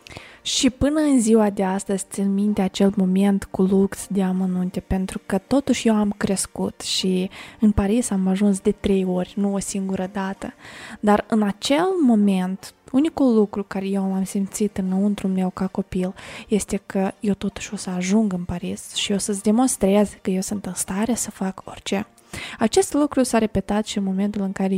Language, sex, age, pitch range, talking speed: Romanian, female, 20-39, 195-235 Hz, 185 wpm